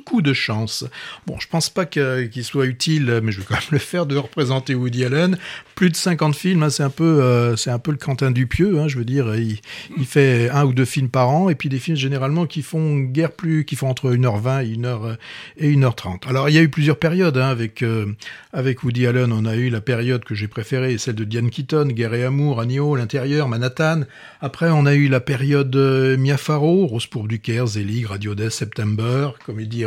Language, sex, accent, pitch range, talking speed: French, male, French, 120-150 Hz, 235 wpm